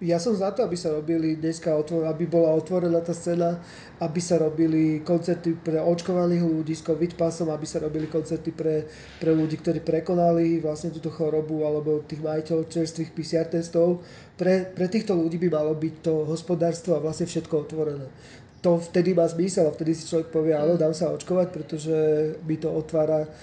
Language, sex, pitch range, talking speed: Slovak, male, 155-170 Hz, 180 wpm